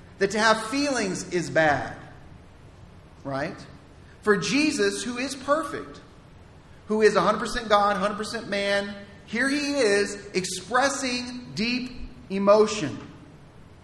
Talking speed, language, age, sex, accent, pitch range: 105 wpm, English, 40-59, male, American, 185-240 Hz